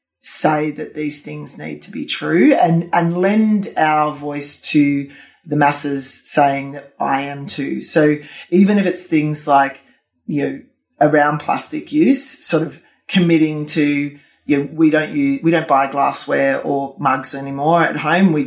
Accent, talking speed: Australian, 165 wpm